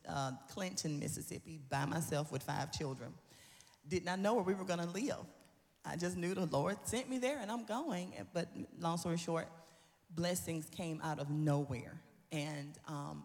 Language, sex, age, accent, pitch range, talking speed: English, female, 40-59, American, 145-180 Hz, 170 wpm